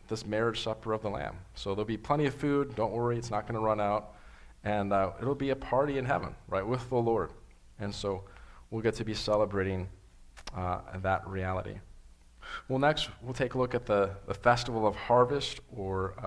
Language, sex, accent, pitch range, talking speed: English, male, American, 95-125 Hz, 205 wpm